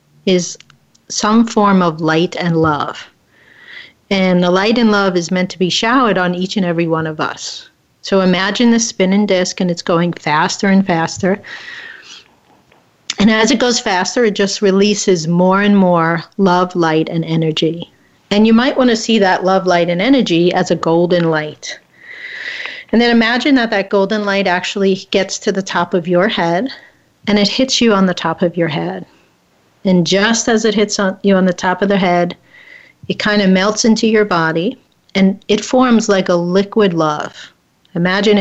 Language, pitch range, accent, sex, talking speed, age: English, 175-210 Hz, American, female, 185 wpm, 40-59